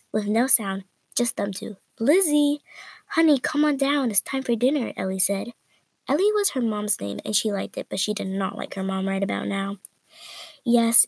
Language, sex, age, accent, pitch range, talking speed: English, female, 10-29, American, 195-270 Hz, 200 wpm